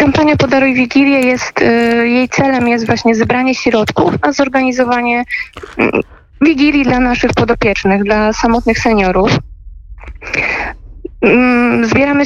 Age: 20-39